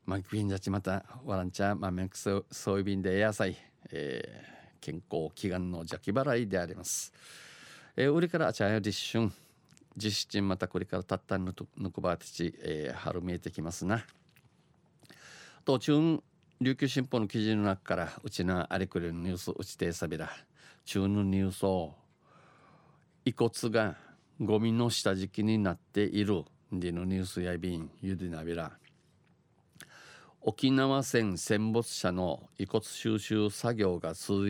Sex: male